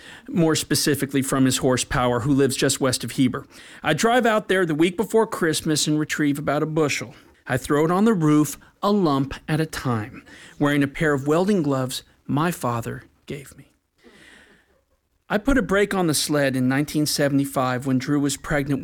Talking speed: 190 wpm